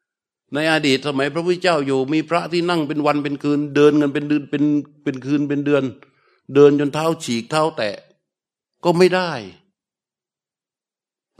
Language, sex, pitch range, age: Thai, male, 140-170 Hz, 60-79